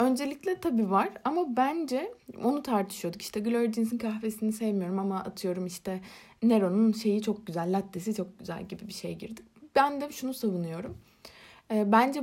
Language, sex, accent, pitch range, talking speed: Turkish, female, native, 195-245 Hz, 145 wpm